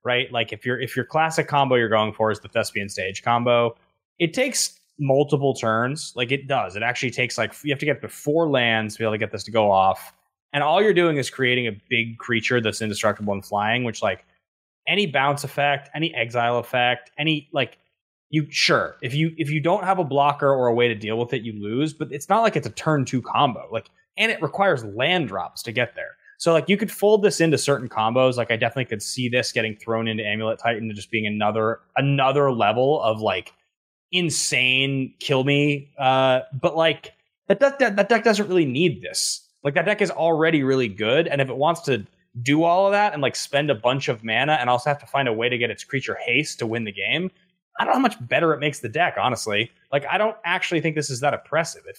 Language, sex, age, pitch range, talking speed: English, male, 20-39, 115-160 Hz, 230 wpm